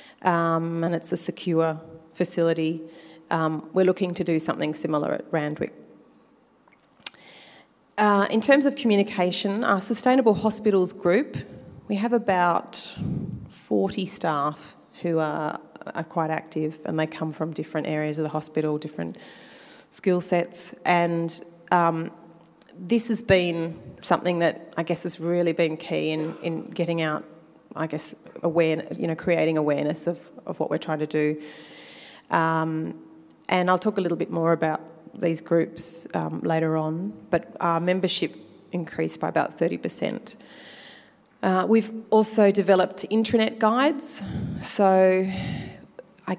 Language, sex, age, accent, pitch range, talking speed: English, female, 30-49, Australian, 160-190 Hz, 140 wpm